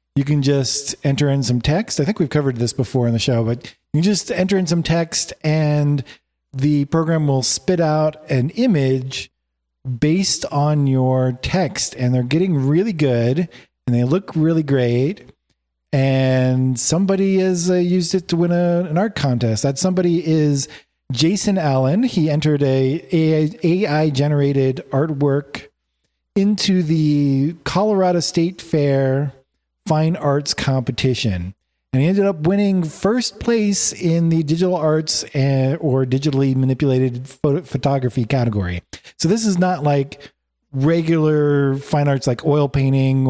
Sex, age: male, 40-59